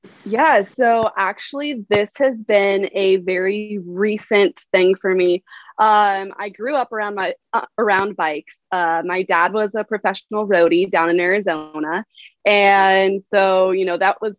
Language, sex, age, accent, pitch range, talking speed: English, female, 20-39, American, 180-215 Hz, 155 wpm